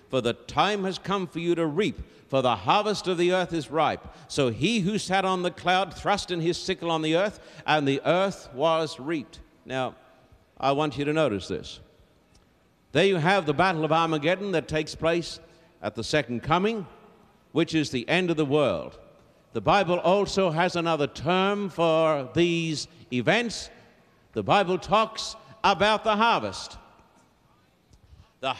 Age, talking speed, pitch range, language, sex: 60-79, 170 wpm, 160-220 Hz, English, male